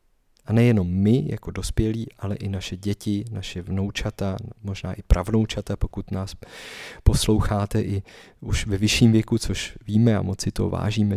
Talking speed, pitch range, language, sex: 150 wpm, 100-115 Hz, Czech, male